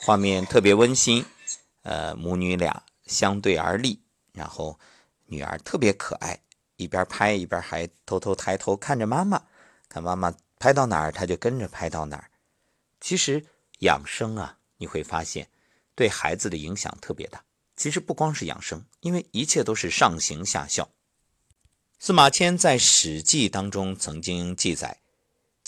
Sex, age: male, 50-69